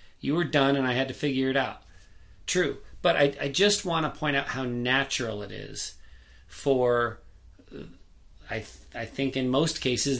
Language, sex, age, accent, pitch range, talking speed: English, male, 40-59, American, 110-135 Hz, 180 wpm